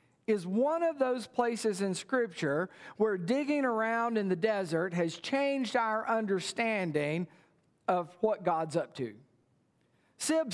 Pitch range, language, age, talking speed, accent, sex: 185-245 Hz, English, 50-69, 130 wpm, American, male